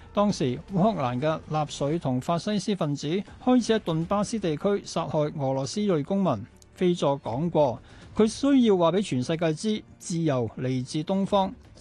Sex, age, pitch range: male, 60-79, 140-195 Hz